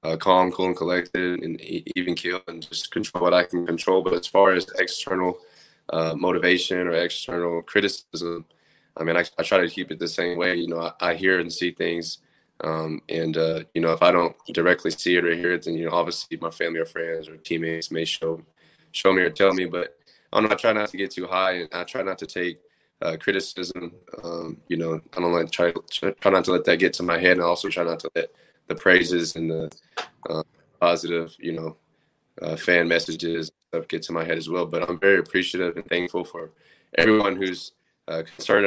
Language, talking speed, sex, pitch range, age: English, 225 wpm, male, 80-90 Hz, 20-39